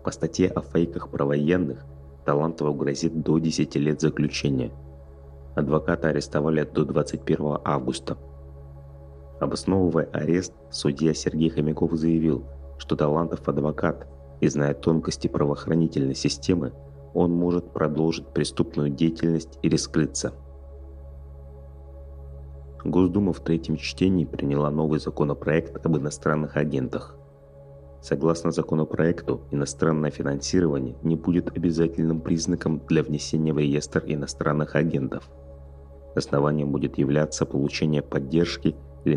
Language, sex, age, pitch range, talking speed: Russian, male, 30-49, 70-80 Hz, 105 wpm